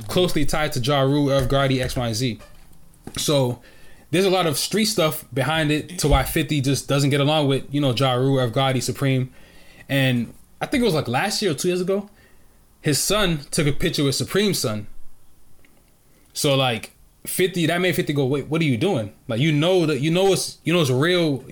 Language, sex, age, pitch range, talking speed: English, male, 20-39, 130-155 Hz, 205 wpm